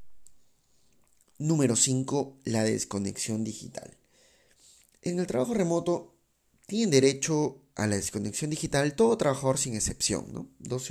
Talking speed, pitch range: 115 wpm, 110-155 Hz